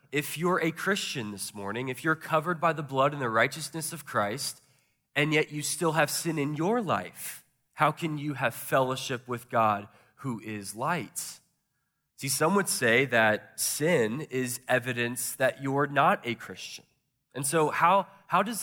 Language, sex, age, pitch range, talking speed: English, male, 20-39, 120-155 Hz, 175 wpm